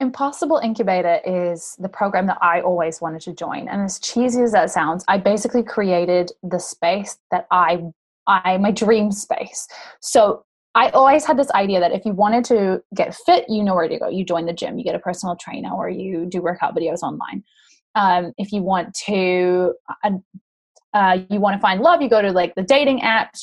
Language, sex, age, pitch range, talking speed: English, female, 20-39, 180-235 Hz, 205 wpm